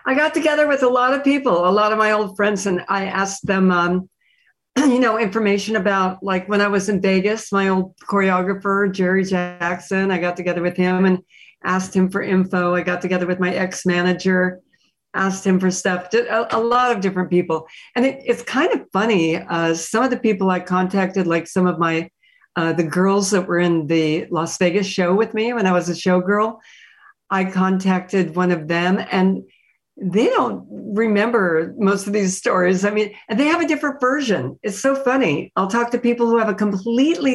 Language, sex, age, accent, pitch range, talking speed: English, female, 60-79, American, 180-215 Hz, 200 wpm